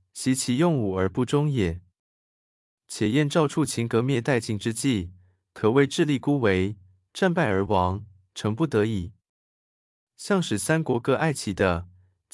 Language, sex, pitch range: Chinese, male, 95-145 Hz